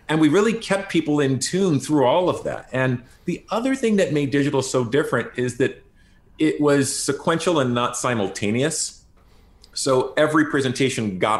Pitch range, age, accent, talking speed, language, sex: 105-145 Hz, 40-59, American, 170 wpm, English, male